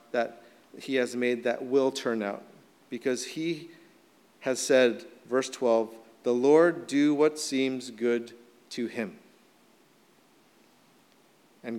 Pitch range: 130-170 Hz